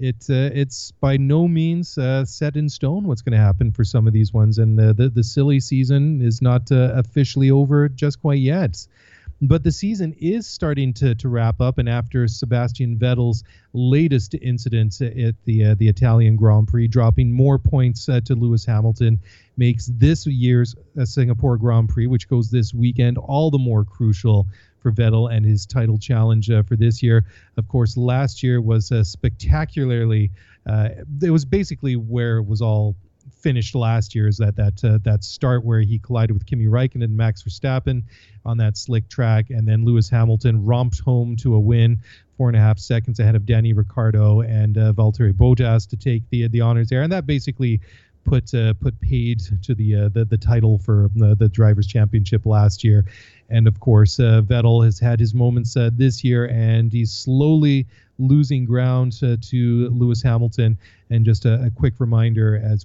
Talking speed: 190 wpm